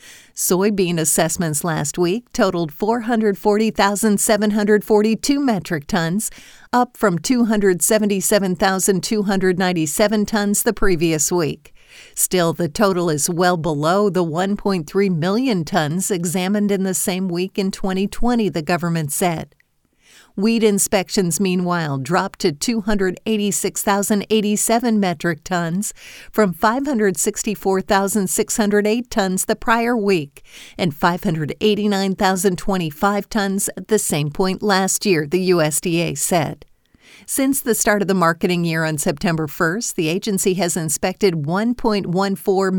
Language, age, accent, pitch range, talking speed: English, 50-69, American, 175-210 Hz, 105 wpm